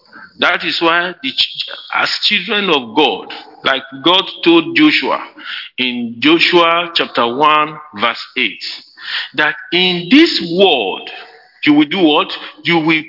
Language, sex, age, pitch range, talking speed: English, male, 50-69, 180-280 Hz, 130 wpm